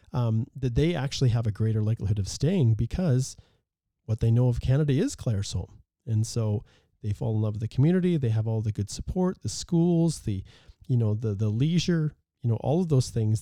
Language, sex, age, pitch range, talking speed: English, male, 40-59, 105-135 Hz, 215 wpm